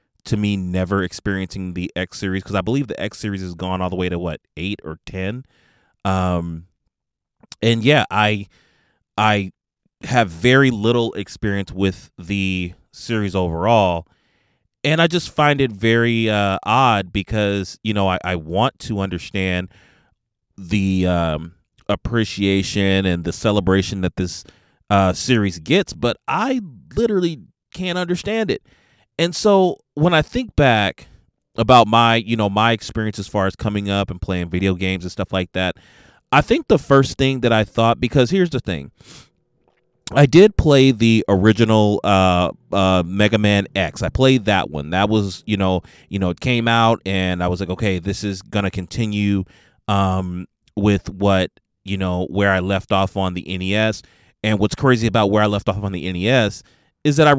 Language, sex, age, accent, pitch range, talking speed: English, male, 30-49, American, 95-115 Hz, 170 wpm